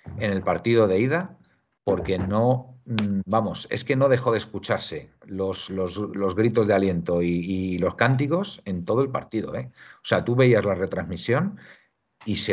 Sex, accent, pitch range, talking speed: male, Spanish, 90-115 Hz, 175 wpm